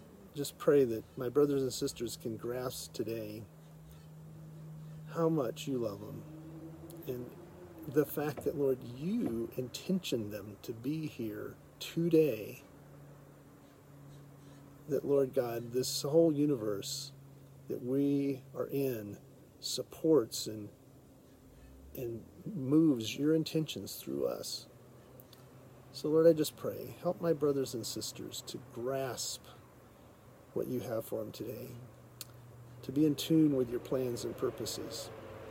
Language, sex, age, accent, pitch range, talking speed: English, male, 40-59, American, 110-145 Hz, 120 wpm